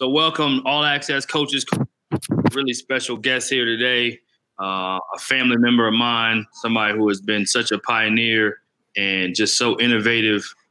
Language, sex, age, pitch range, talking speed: English, male, 20-39, 100-115 Hz, 150 wpm